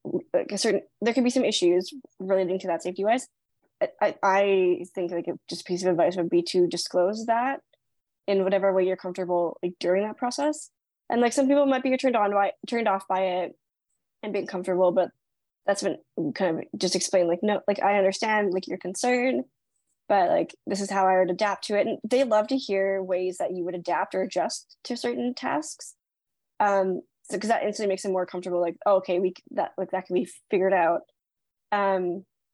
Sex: female